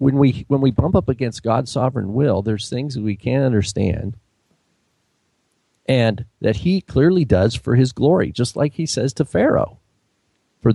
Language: English